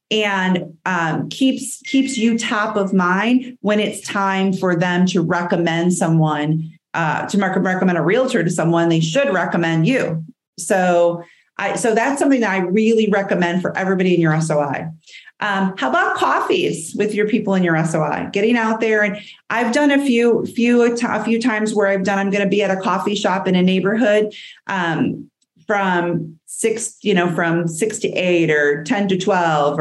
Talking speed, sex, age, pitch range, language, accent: 185 wpm, female, 40-59, 175-215 Hz, English, American